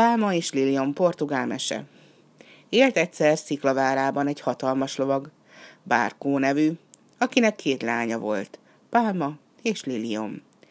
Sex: female